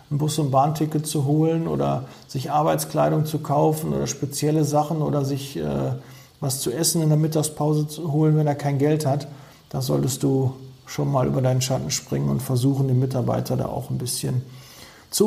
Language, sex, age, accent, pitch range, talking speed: German, male, 40-59, German, 130-150 Hz, 190 wpm